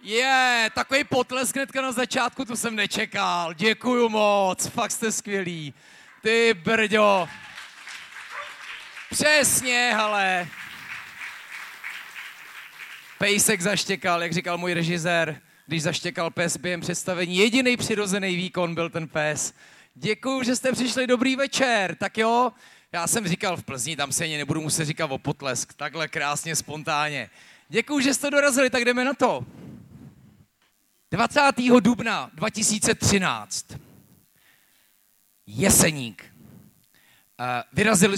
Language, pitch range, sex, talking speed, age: Czech, 145-220 Hz, male, 115 wpm, 30-49